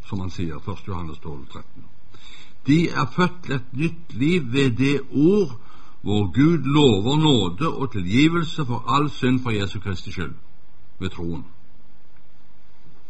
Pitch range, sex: 95-135 Hz, male